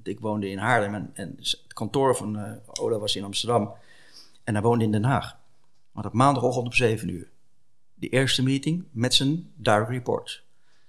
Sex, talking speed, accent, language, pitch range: male, 180 wpm, Dutch, English, 110-135 Hz